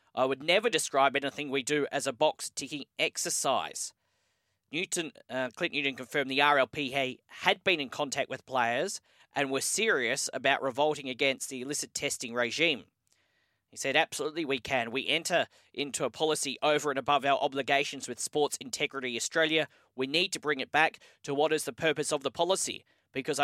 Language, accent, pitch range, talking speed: English, Australian, 135-155 Hz, 175 wpm